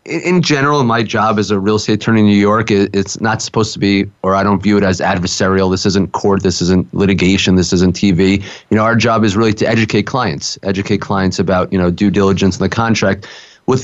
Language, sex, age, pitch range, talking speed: English, male, 30-49, 100-115 Hz, 230 wpm